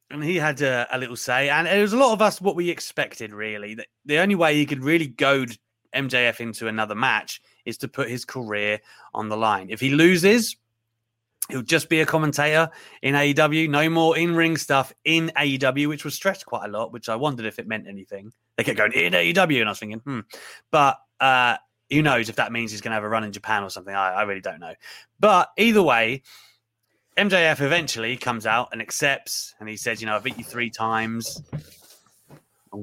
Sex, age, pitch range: male, 30-49, 115-165 Hz